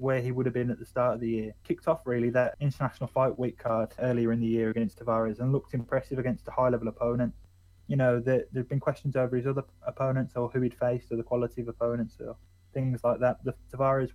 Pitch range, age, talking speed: 120-135 Hz, 20-39, 240 wpm